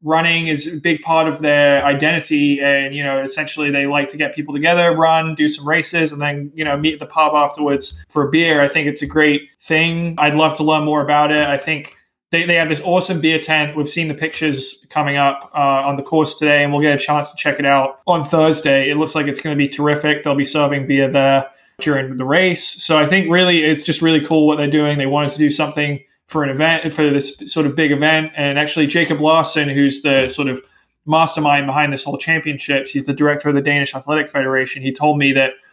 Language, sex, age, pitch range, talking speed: English, male, 20-39, 140-155 Hz, 240 wpm